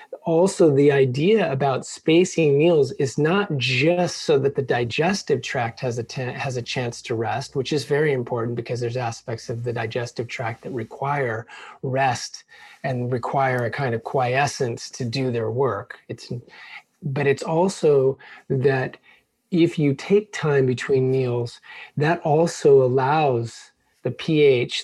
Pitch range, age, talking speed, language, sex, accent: 120-145 Hz, 30-49, 150 wpm, English, male, American